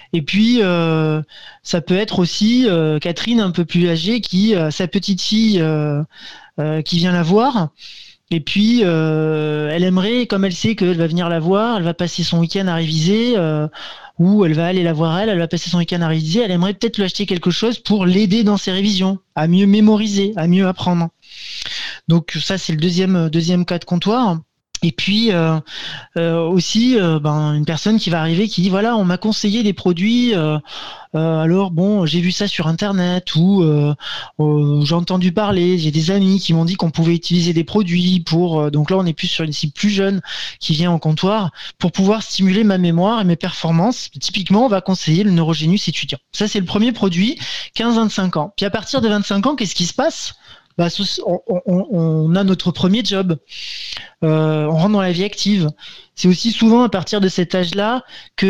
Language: French